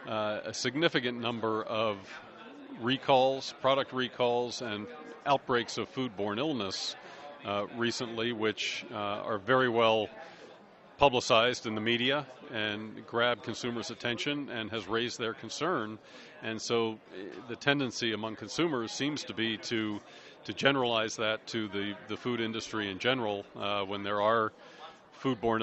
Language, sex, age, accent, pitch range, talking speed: English, male, 40-59, American, 105-125 Hz, 140 wpm